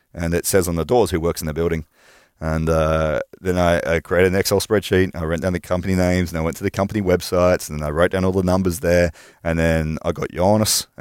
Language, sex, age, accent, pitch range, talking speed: Finnish, male, 30-49, Australian, 80-90 Hz, 255 wpm